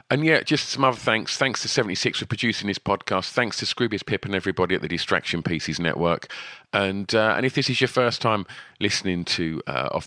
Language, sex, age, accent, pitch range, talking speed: English, male, 40-59, British, 85-110 Hz, 225 wpm